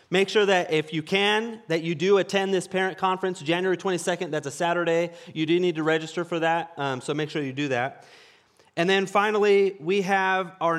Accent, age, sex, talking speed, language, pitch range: American, 30-49, male, 210 wpm, English, 155-215 Hz